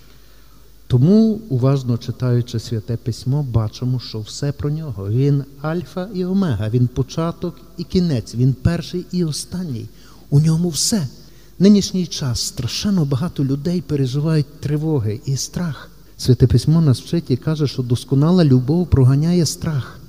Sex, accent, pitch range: male, native, 130-160 Hz